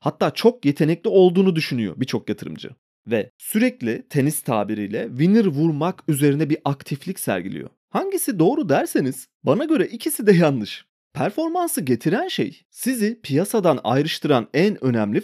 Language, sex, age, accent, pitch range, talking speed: Turkish, male, 30-49, native, 145-215 Hz, 130 wpm